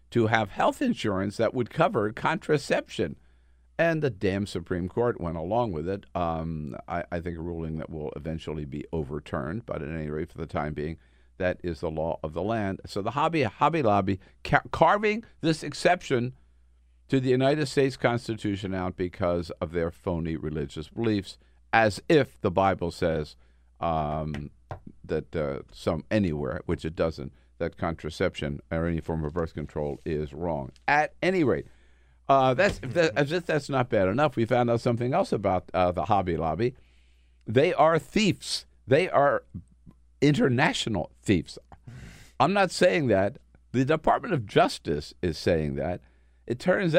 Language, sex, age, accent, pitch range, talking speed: English, male, 50-69, American, 75-125 Hz, 160 wpm